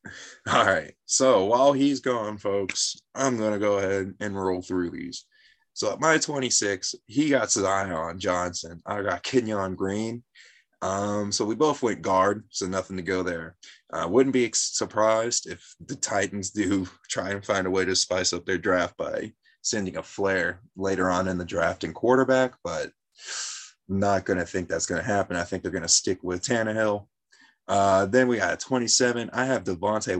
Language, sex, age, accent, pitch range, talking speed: English, male, 20-39, American, 95-125 Hz, 195 wpm